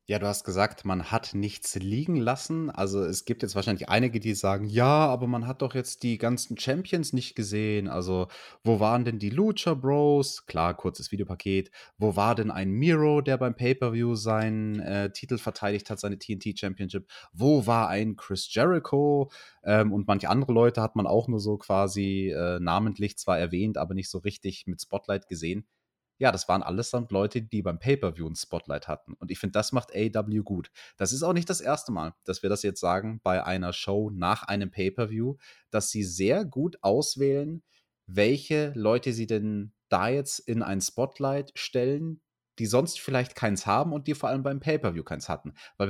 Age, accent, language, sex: 30-49, German, German, male